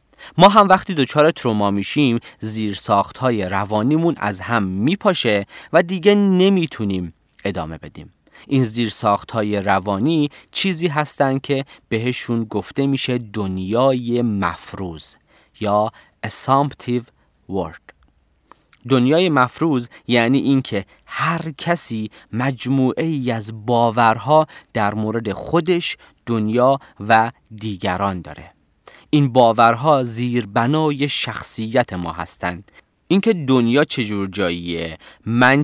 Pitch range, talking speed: 100-135 Hz, 100 wpm